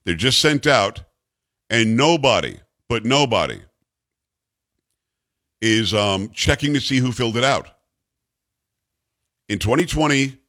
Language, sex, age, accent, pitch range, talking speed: English, male, 50-69, American, 110-145 Hz, 110 wpm